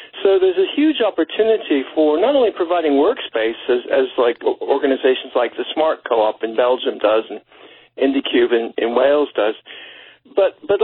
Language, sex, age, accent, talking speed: English, male, 60-79, American, 160 wpm